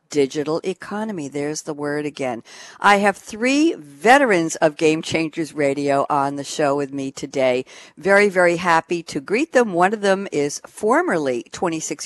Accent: American